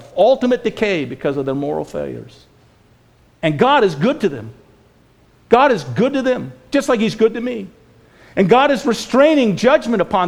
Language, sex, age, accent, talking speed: English, male, 50-69, American, 175 wpm